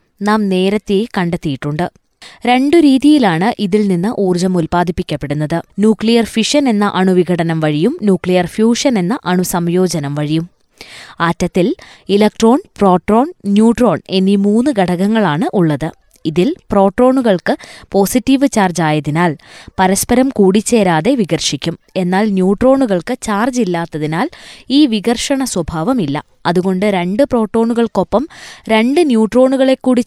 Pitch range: 180-235 Hz